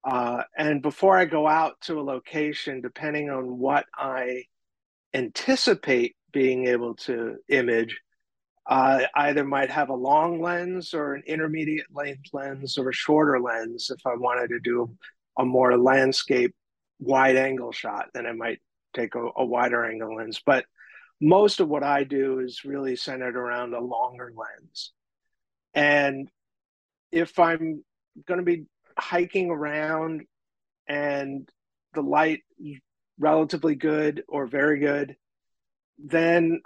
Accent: American